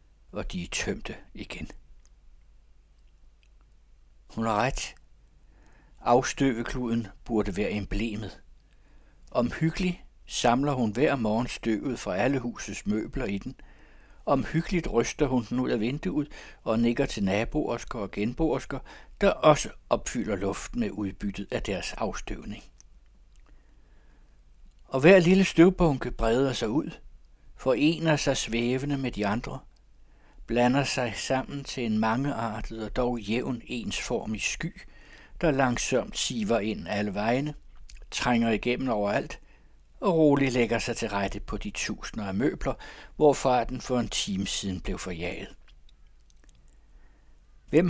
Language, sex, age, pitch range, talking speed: Danish, male, 60-79, 105-140 Hz, 125 wpm